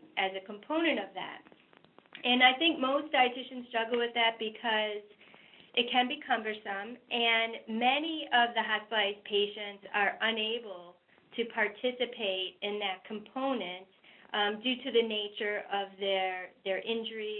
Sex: female